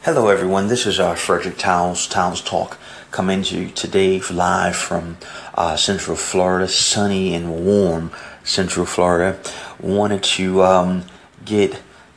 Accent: American